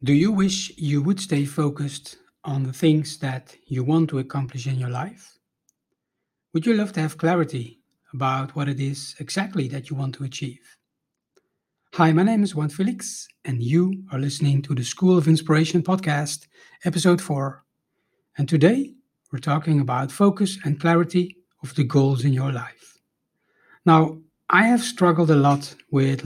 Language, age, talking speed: English, 60-79, 165 wpm